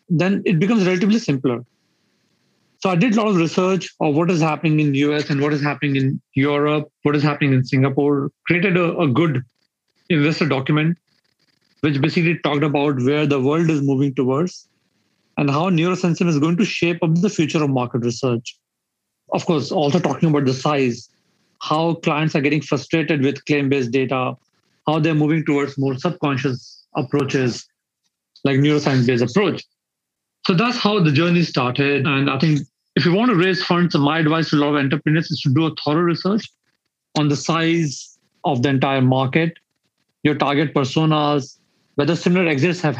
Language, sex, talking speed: Indonesian, male, 175 wpm